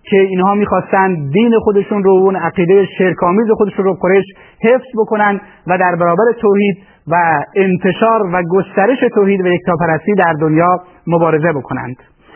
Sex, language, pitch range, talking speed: male, Persian, 175-205 Hz, 135 wpm